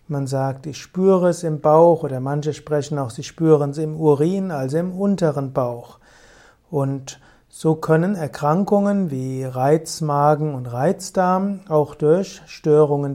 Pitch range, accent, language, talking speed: 145-180 Hz, German, German, 140 wpm